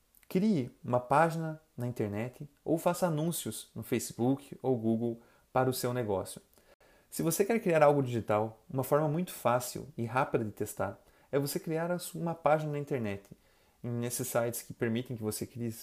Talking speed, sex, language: 165 wpm, male, Portuguese